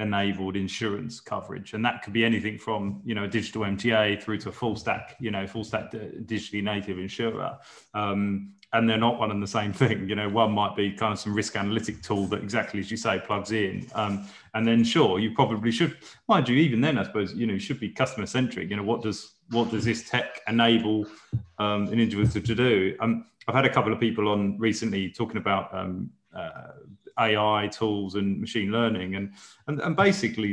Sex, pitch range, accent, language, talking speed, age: male, 105-115 Hz, British, English, 215 wpm, 20-39